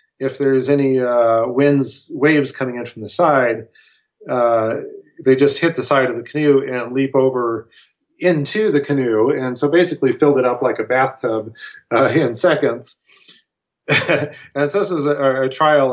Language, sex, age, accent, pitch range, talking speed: English, male, 40-59, American, 120-140 Hz, 170 wpm